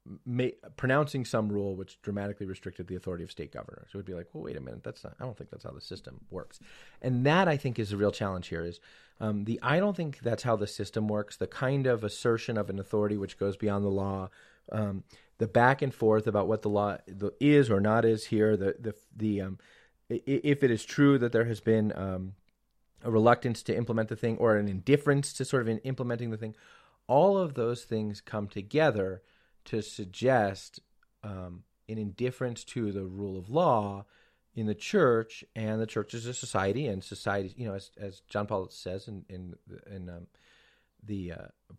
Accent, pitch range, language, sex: American, 95-120 Hz, English, male